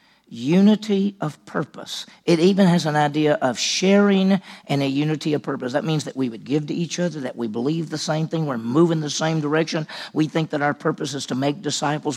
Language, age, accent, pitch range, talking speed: English, 50-69, American, 140-175 Hz, 215 wpm